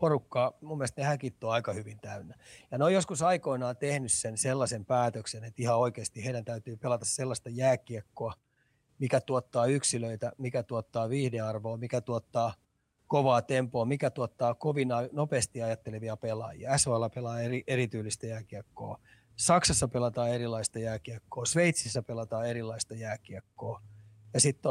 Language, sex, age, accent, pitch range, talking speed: Finnish, male, 30-49, native, 115-135 Hz, 135 wpm